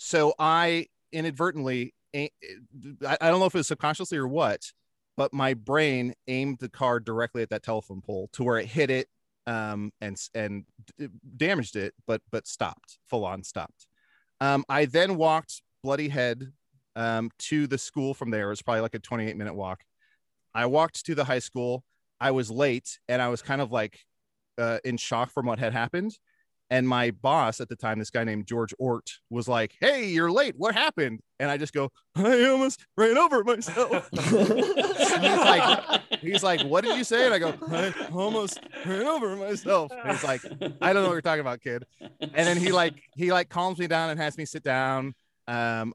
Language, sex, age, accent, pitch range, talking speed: English, male, 30-49, American, 115-160 Hz, 195 wpm